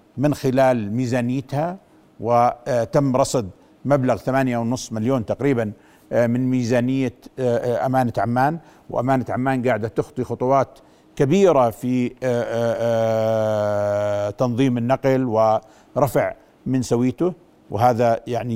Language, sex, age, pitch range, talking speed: Arabic, male, 50-69, 120-150 Hz, 90 wpm